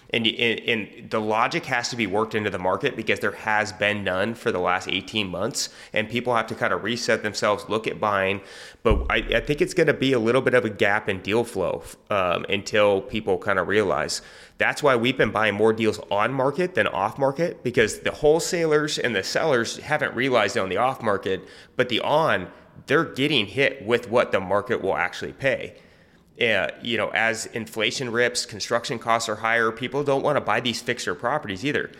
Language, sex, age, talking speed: English, male, 30-49, 210 wpm